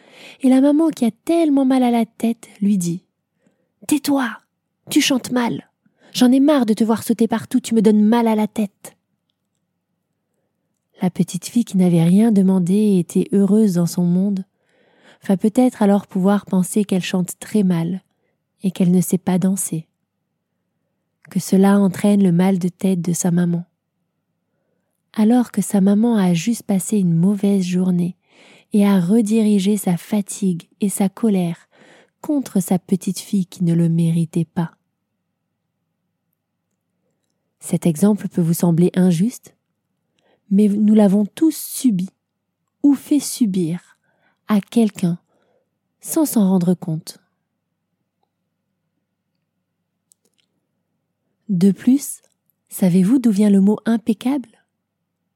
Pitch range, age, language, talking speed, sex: 185-230 Hz, 20-39, French, 135 wpm, female